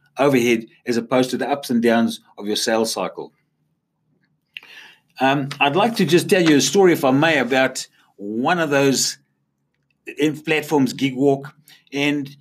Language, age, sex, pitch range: English, 50-69, male, 130-165 Hz